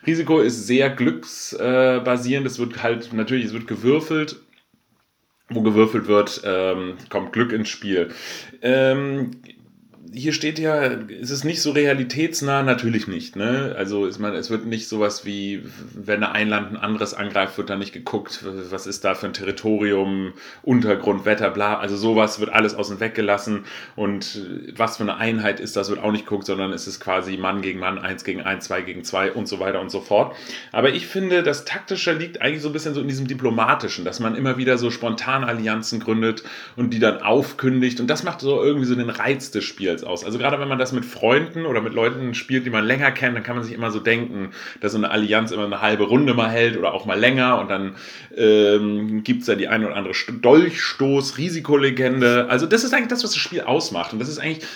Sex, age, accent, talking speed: male, 30-49, German, 210 wpm